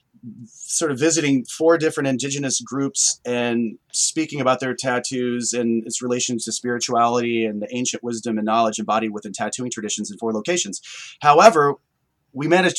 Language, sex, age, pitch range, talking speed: English, male, 30-49, 115-150 Hz, 155 wpm